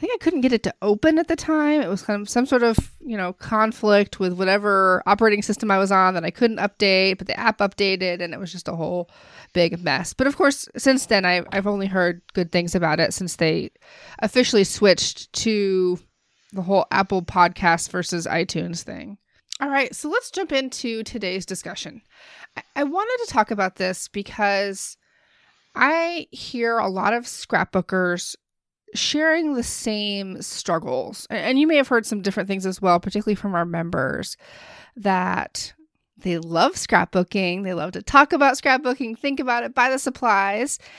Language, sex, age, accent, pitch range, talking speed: English, female, 20-39, American, 190-265 Hz, 180 wpm